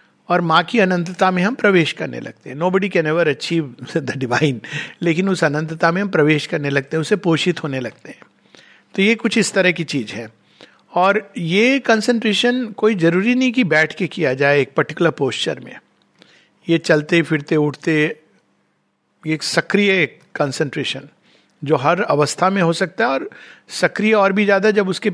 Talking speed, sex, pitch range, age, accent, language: 180 wpm, male, 145-195 Hz, 50-69, native, Hindi